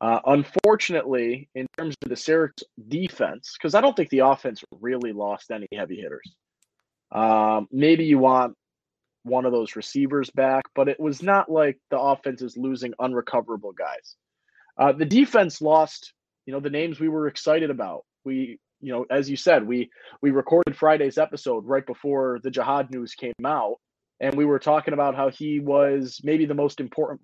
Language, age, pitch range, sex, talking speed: English, 20-39, 125-150 Hz, male, 180 wpm